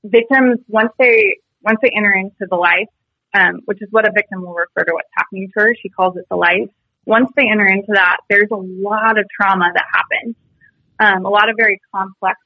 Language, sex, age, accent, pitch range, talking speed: English, female, 20-39, American, 190-225 Hz, 215 wpm